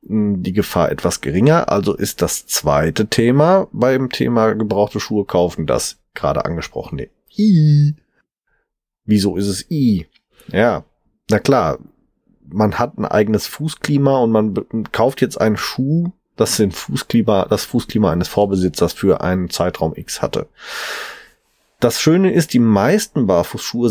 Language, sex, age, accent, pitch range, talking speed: German, male, 30-49, German, 95-125 Hz, 130 wpm